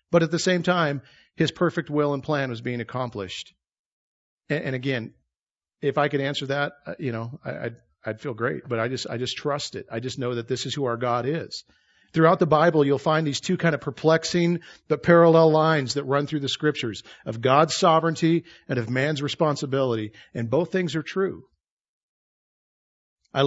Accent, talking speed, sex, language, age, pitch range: American, 190 wpm, male, English, 40-59, 125-155 Hz